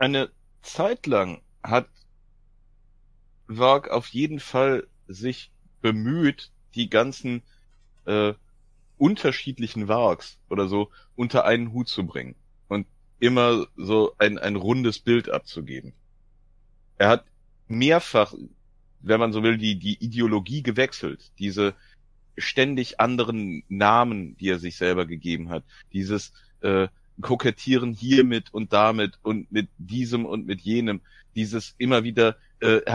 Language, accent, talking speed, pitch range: German, German, 125 wpm, 105-130 Hz